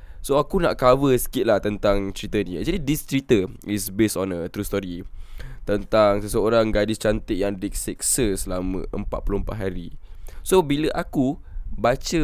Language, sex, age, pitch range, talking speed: Malay, male, 10-29, 90-125 Hz, 150 wpm